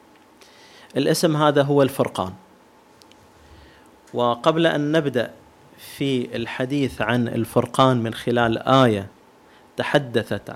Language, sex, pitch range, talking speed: Arabic, male, 115-145 Hz, 85 wpm